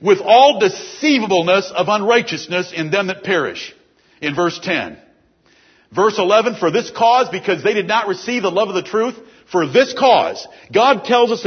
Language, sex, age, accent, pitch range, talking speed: English, male, 50-69, American, 200-270 Hz, 175 wpm